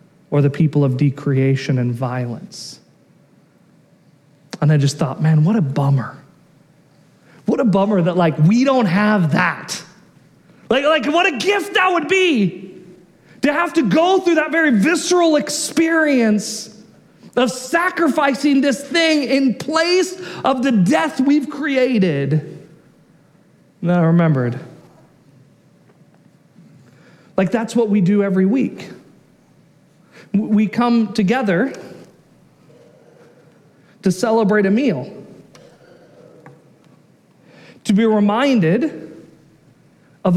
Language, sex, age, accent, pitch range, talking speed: English, male, 40-59, American, 170-280 Hz, 110 wpm